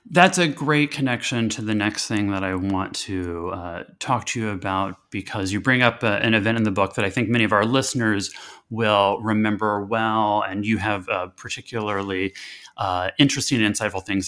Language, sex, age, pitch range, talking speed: English, male, 30-49, 105-140 Hz, 195 wpm